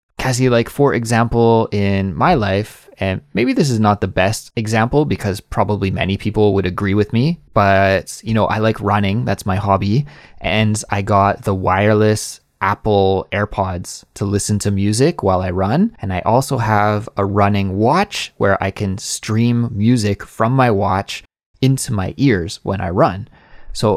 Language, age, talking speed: English, 20-39, 170 wpm